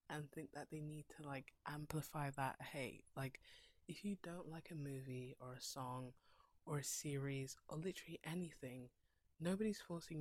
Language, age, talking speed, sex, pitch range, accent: English, 20-39, 165 wpm, female, 135-170 Hz, British